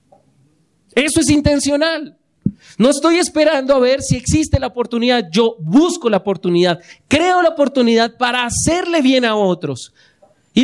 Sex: male